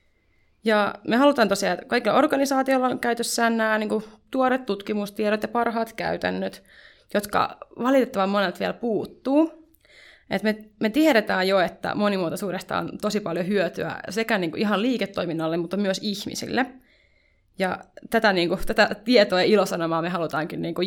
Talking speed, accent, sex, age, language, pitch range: 140 wpm, native, female, 20-39, Finnish, 195-250 Hz